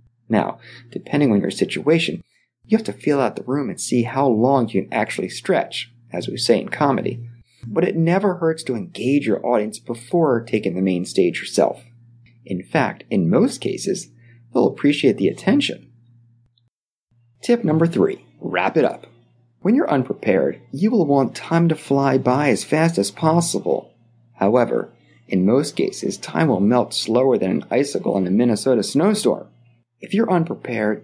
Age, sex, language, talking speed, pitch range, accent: 30-49, male, English, 165 wpm, 120-165 Hz, American